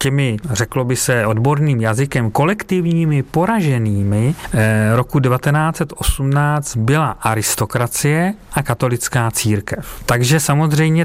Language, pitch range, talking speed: Czech, 115-150 Hz, 90 wpm